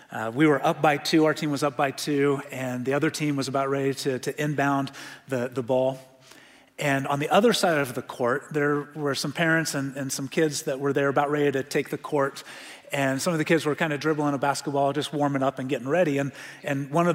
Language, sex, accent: English, male, American